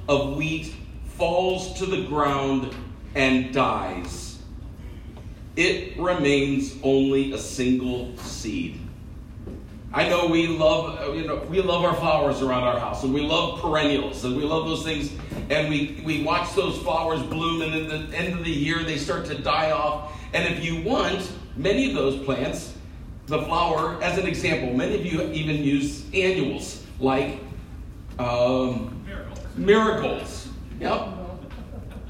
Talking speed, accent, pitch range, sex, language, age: 145 wpm, American, 130-175 Hz, male, English, 50-69